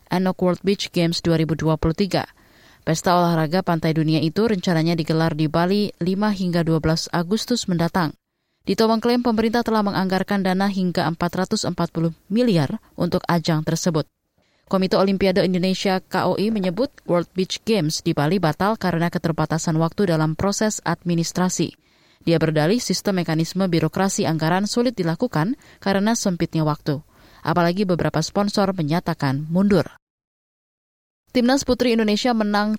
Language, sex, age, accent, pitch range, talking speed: Indonesian, female, 20-39, native, 165-200 Hz, 125 wpm